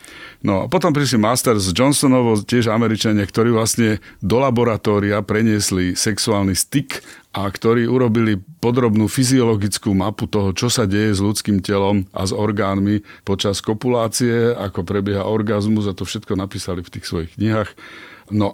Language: Slovak